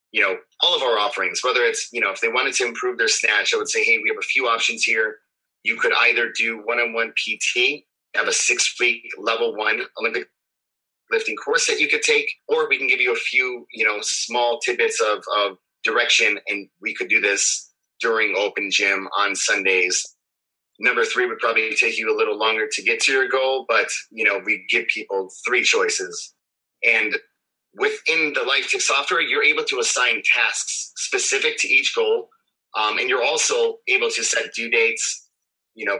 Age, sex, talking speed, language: 30-49, male, 195 wpm, English